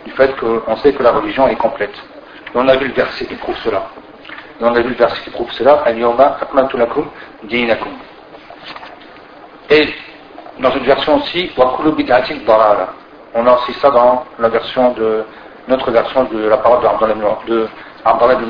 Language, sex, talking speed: French, male, 165 wpm